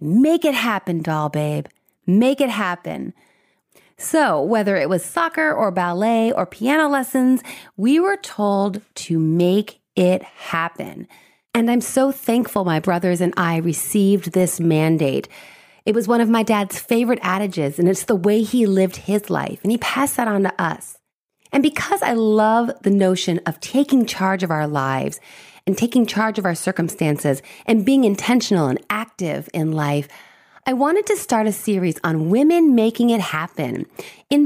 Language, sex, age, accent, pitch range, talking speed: English, female, 30-49, American, 180-245 Hz, 165 wpm